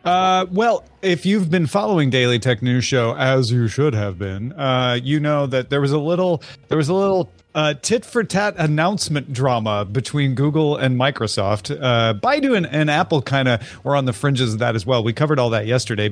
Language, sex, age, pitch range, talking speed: English, male, 40-59, 120-160 Hz, 210 wpm